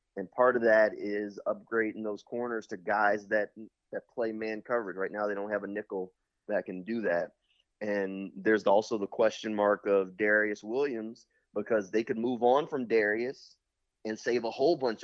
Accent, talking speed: American, 190 wpm